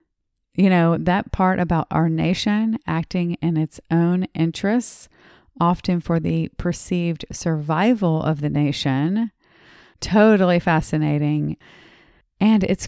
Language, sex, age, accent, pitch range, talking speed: English, female, 30-49, American, 155-195 Hz, 110 wpm